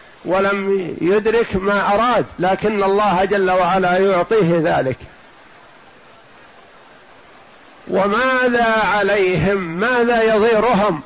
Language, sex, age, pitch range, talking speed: Arabic, male, 50-69, 185-225 Hz, 75 wpm